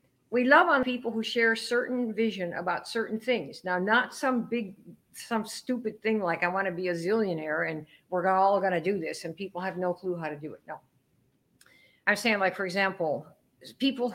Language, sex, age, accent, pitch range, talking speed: English, female, 50-69, American, 180-235 Hz, 205 wpm